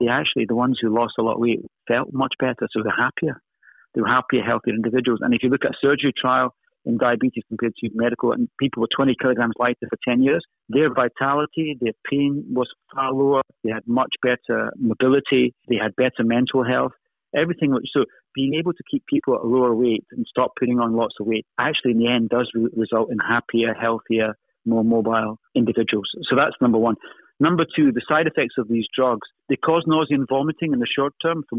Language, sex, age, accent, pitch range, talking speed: English, male, 40-59, British, 115-140 Hz, 215 wpm